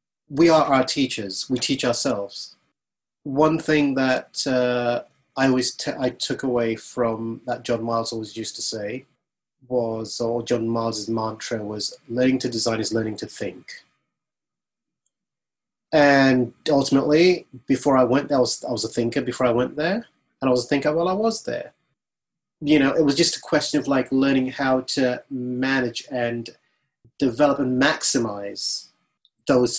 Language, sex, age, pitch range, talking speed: English, male, 30-49, 120-135 Hz, 165 wpm